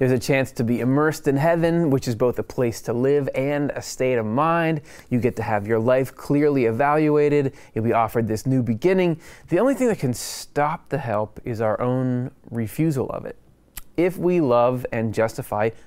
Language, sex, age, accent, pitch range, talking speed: English, male, 20-39, American, 115-150 Hz, 200 wpm